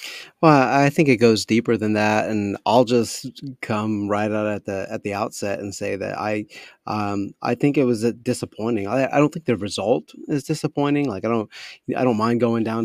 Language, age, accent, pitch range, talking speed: English, 30-49, American, 105-120 Hz, 220 wpm